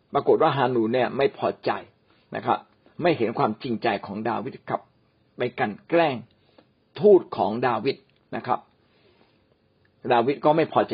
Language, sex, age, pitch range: Thai, male, 60-79, 125-170 Hz